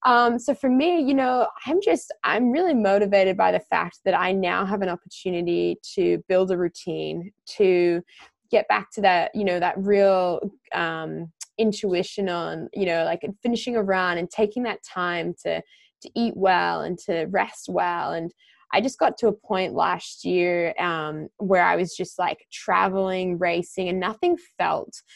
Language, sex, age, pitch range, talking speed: English, female, 20-39, 180-230 Hz, 175 wpm